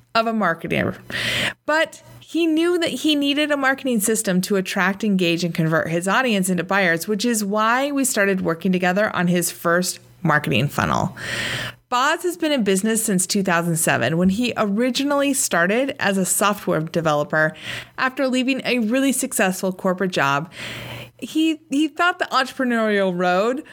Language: English